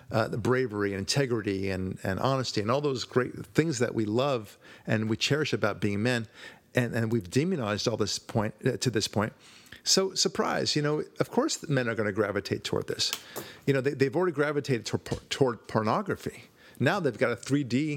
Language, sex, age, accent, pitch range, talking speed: English, male, 50-69, American, 110-140 Hz, 205 wpm